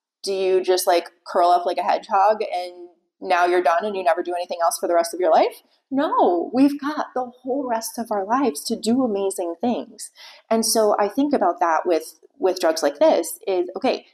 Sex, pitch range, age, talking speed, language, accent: female, 175-260 Hz, 30-49, 215 wpm, English, American